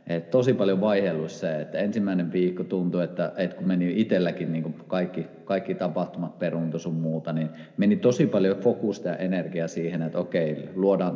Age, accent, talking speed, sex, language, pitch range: 30-49, native, 170 wpm, male, Finnish, 85-105 Hz